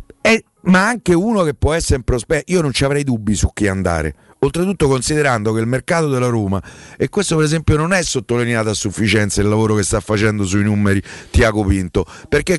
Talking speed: 200 wpm